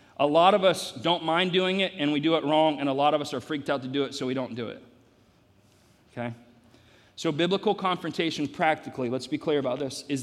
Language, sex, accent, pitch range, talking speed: English, male, American, 125-155 Hz, 235 wpm